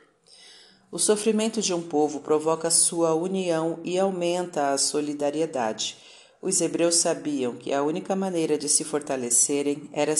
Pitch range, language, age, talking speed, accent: 140-170 Hz, Portuguese, 40-59, 135 wpm, Brazilian